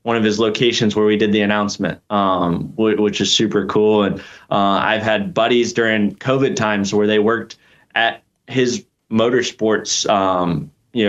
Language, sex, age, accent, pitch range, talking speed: English, male, 20-39, American, 100-115 Hz, 170 wpm